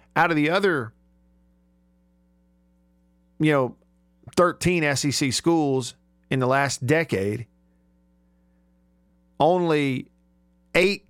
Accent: American